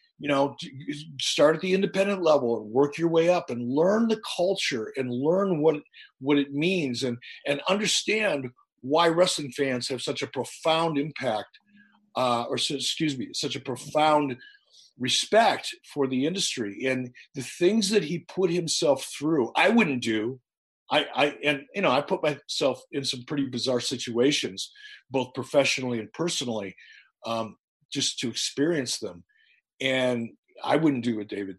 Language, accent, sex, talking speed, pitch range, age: English, American, male, 160 wpm, 125-170 Hz, 50-69